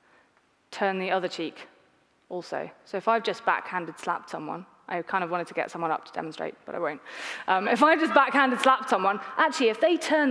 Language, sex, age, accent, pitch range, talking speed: English, female, 30-49, British, 190-255 Hz, 215 wpm